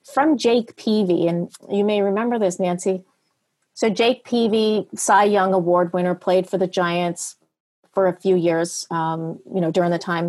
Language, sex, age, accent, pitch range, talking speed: English, female, 40-59, American, 180-235 Hz, 175 wpm